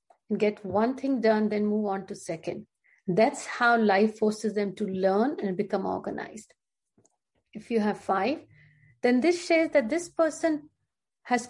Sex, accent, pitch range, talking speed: female, native, 210-250 Hz, 160 wpm